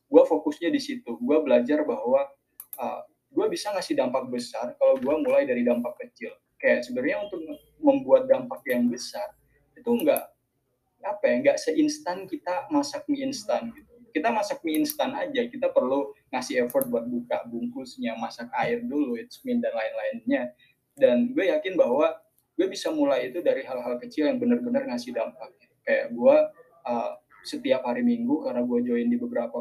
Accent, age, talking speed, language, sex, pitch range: native, 20-39, 165 wpm, Indonesian, male, 245-290 Hz